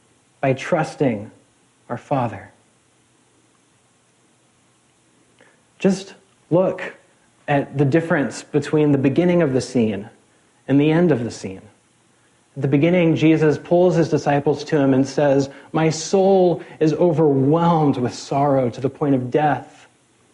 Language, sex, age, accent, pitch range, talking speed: English, male, 40-59, American, 120-155 Hz, 125 wpm